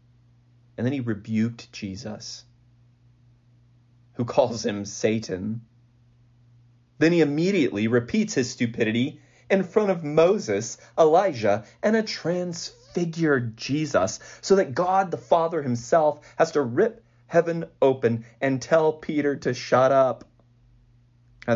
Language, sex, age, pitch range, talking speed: English, male, 30-49, 115-125 Hz, 115 wpm